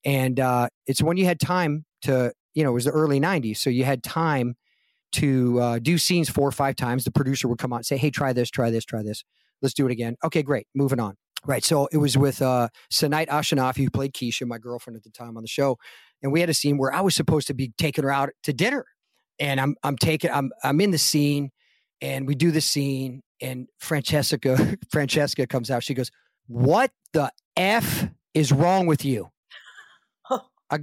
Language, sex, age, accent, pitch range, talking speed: English, male, 40-59, American, 130-200 Hz, 220 wpm